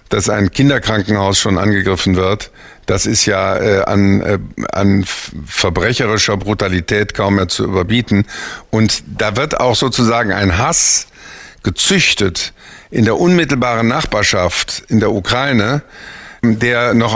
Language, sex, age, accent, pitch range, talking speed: German, male, 50-69, German, 110-140 Hz, 120 wpm